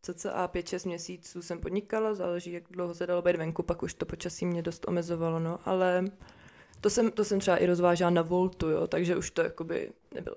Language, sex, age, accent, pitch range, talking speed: Czech, female, 20-39, native, 175-195 Hz, 220 wpm